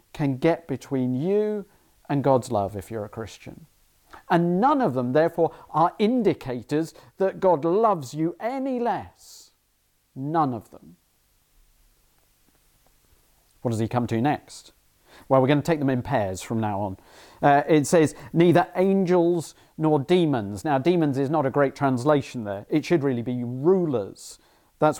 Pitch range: 130-175 Hz